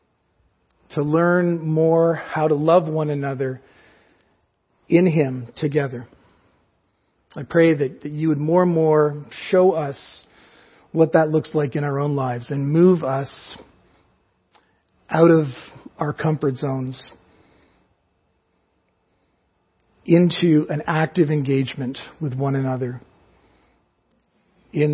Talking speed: 110 wpm